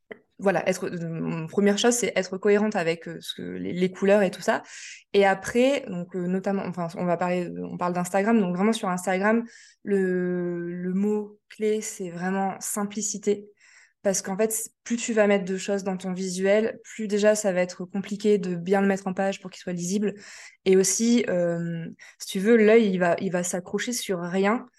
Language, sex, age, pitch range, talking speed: French, female, 20-39, 185-215 Hz, 195 wpm